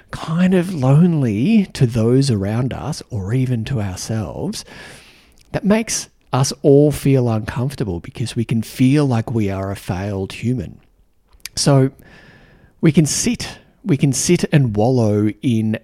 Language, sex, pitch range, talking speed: English, male, 115-150 Hz, 140 wpm